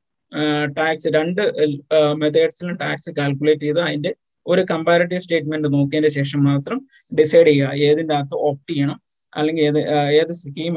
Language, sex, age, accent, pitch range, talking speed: Malayalam, male, 20-39, native, 145-170 Hz, 130 wpm